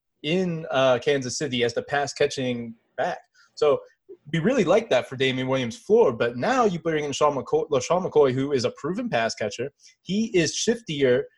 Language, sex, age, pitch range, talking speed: English, male, 20-39, 125-170 Hz, 175 wpm